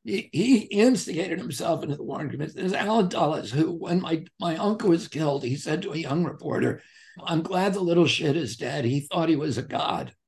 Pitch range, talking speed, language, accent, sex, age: 145-185 Hz, 210 wpm, English, American, male, 60-79